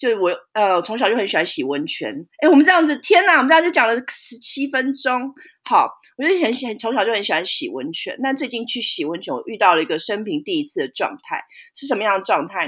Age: 30-49